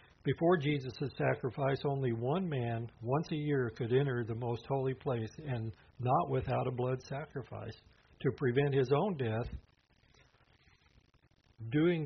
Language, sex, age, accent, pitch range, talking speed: English, male, 60-79, American, 120-145 Hz, 135 wpm